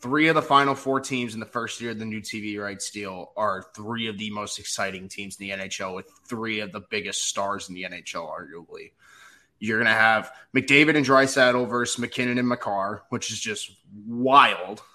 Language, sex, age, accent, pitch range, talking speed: English, male, 20-39, American, 110-140 Hz, 210 wpm